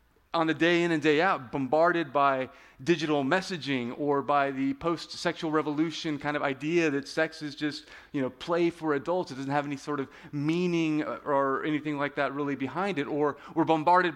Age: 30-49